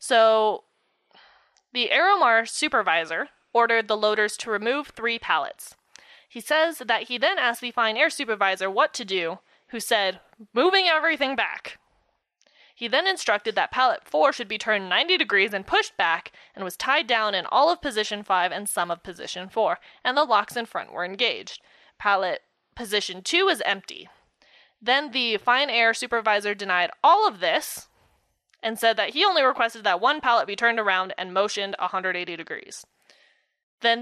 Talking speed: 170 wpm